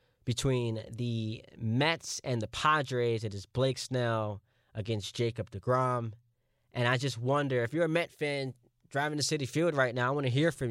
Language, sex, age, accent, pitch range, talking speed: English, male, 20-39, American, 115-145 Hz, 185 wpm